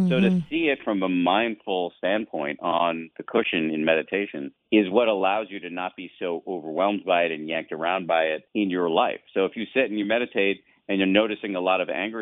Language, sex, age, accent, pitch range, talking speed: English, male, 50-69, American, 85-110 Hz, 225 wpm